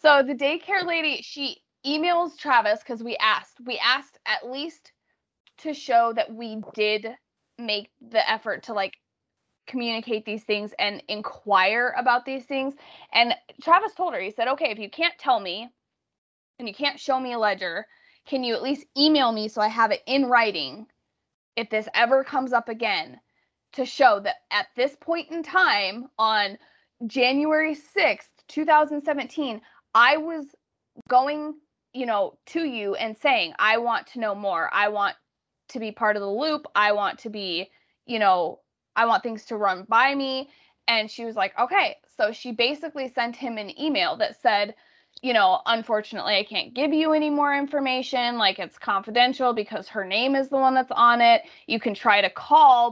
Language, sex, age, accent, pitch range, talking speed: English, female, 20-39, American, 220-295 Hz, 180 wpm